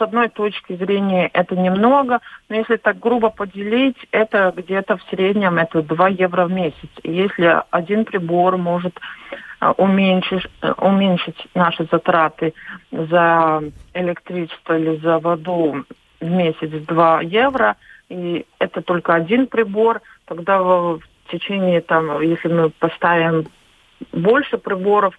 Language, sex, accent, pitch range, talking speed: Russian, female, native, 160-185 Hz, 125 wpm